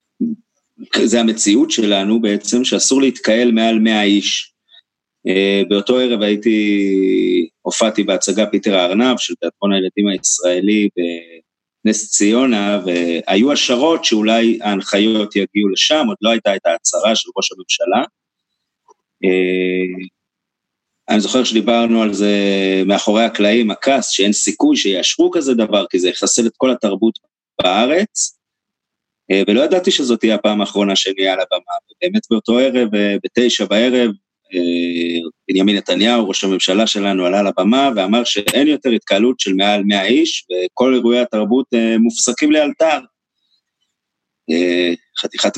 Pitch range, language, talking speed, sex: 100-125 Hz, Hebrew, 120 wpm, male